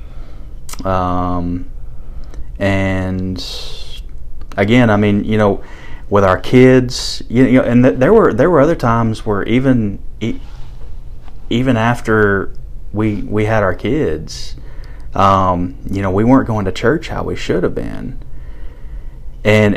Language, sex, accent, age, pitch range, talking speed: English, male, American, 30-49, 70-105 Hz, 130 wpm